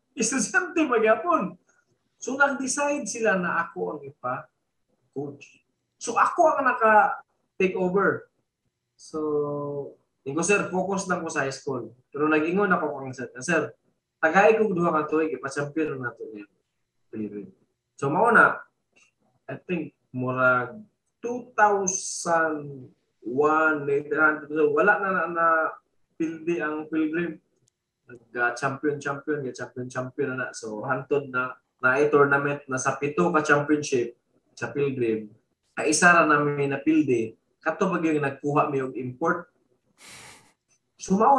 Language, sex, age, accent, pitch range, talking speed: English, male, 20-39, Filipino, 130-185 Hz, 135 wpm